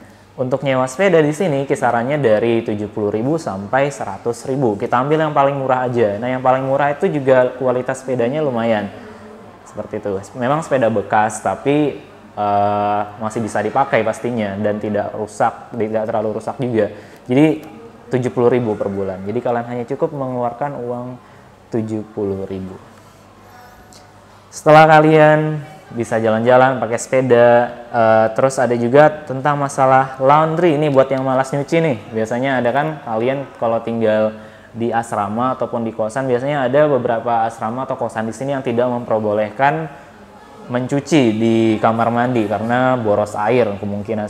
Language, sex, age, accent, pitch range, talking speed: Indonesian, male, 20-39, native, 110-135 Hz, 140 wpm